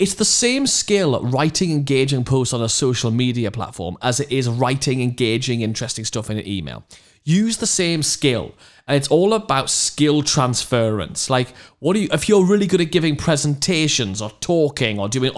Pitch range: 130-200 Hz